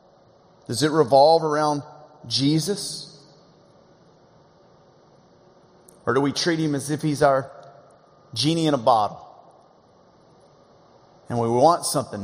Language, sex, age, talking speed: English, male, 40-59, 115 wpm